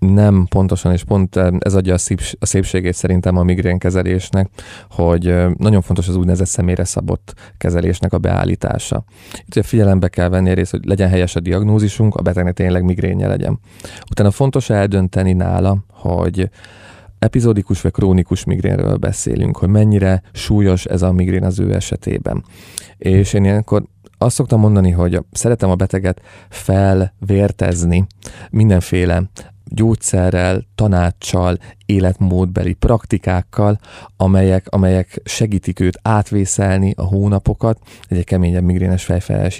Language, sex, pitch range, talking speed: Hungarian, male, 90-105 Hz, 130 wpm